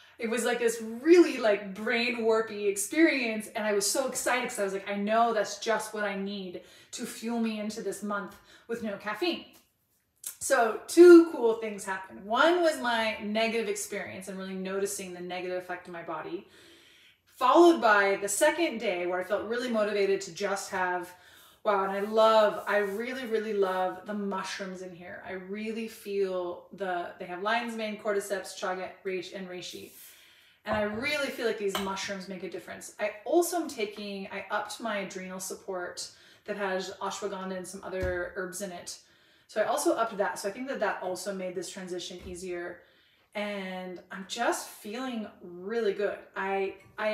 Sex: female